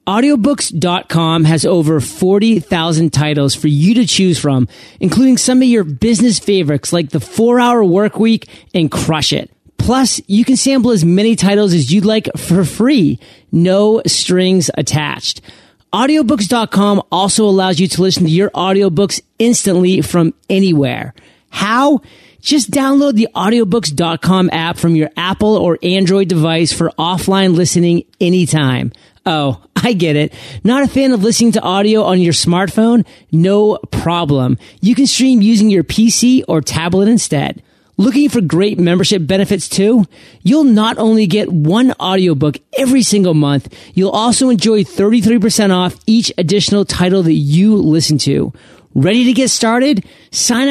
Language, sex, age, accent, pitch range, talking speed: English, male, 30-49, American, 165-225 Hz, 145 wpm